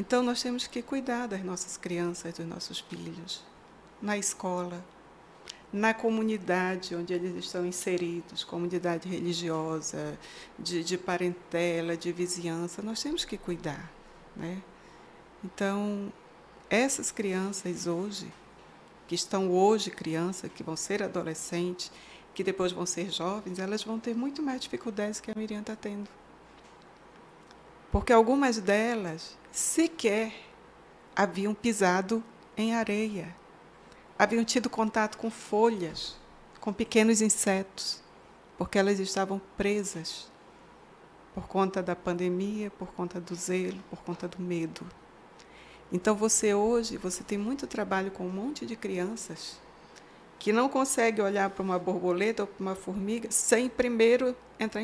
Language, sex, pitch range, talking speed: Portuguese, female, 180-225 Hz, 130 wpm